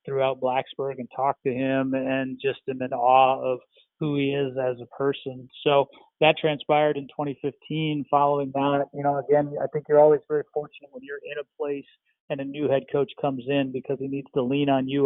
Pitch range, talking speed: 130-140 Hz, 205 wpm